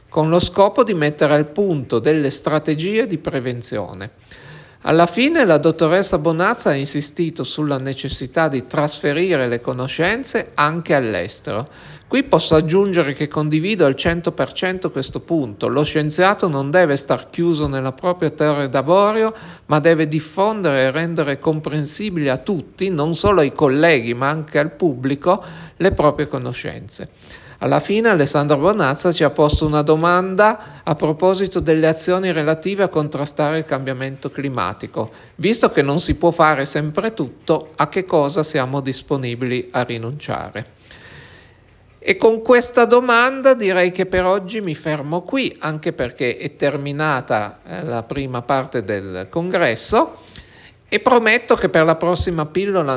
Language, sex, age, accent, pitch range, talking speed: Italian, male, 50-69, native, 135-180 Hz, 140 wpm